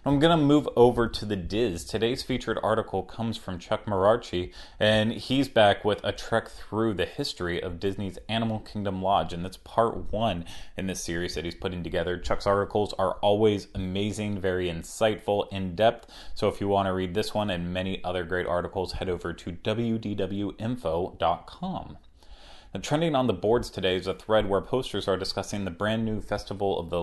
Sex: male